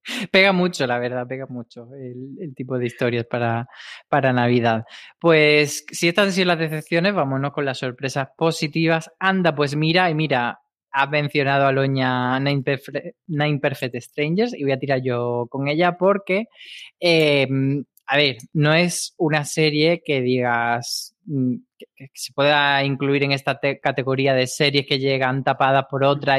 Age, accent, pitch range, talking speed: 20-39, Spanish, 135-160 Hz, 160 wpm